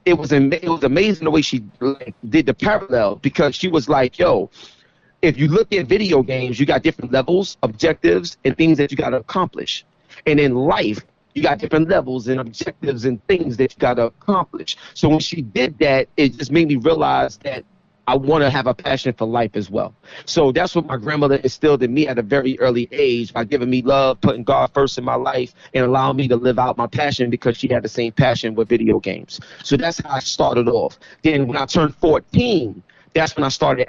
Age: 30-49